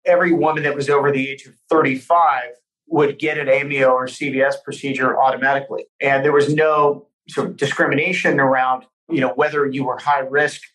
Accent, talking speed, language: American, 165 wpm, English